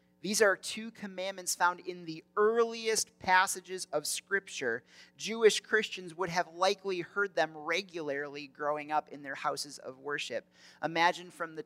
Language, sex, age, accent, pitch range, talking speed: English, male, 30-49, American, 145-175 Hz, 150 wpm